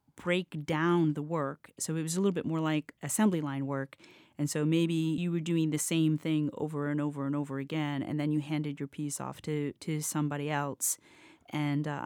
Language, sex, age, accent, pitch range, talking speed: English, female, 40-59, American, 145-170 Hz, 215 wpm